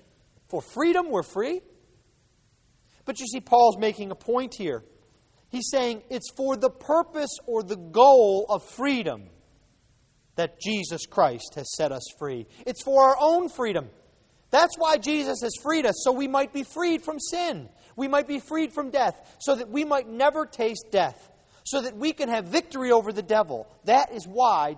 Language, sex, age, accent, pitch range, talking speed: English, male, 30-49, American, 200-280 Hz, 175 wpm